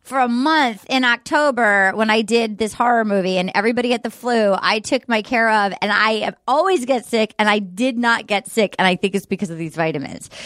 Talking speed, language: 235 wpm, English